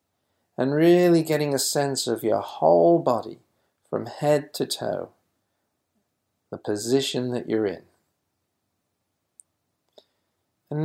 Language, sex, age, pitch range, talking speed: English, male, 50-69, 115-160 Hz, 105 wpm